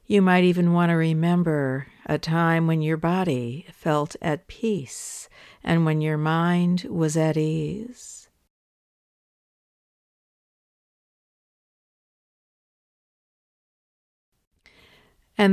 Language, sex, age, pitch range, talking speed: English, female, 60-79, 150-185 Hz, 85 wpm